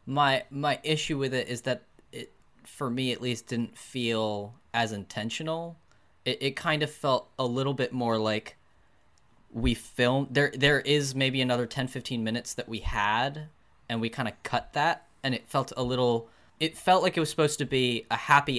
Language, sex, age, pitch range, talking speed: English, male, 10-29, 115-140 Hz, 190 wpm